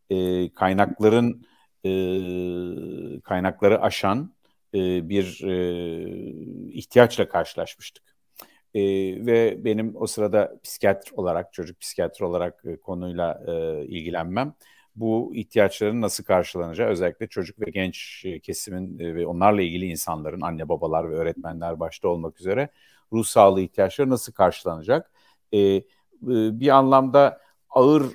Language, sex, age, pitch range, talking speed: Turkish, male, 50-69, 90-110 Hz, 95 wpm